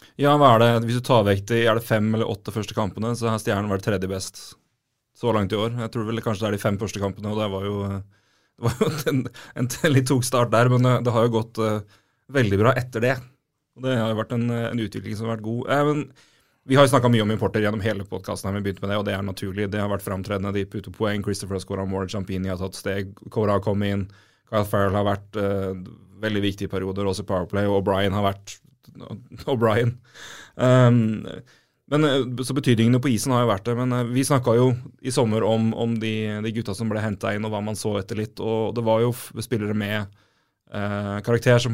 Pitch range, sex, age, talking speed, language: 100-120 Hz, male, 30-49, 240 wpm, English